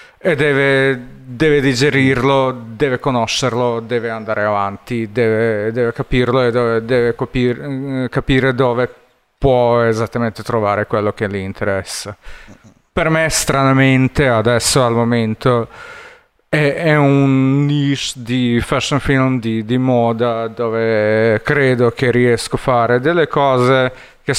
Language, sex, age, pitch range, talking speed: Italian, male, 40-59, 115-130 Hz, 120 wpm